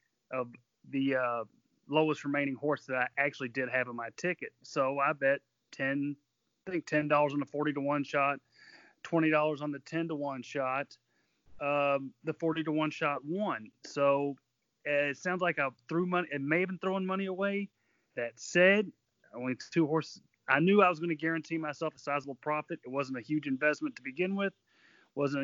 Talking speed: 180 wpm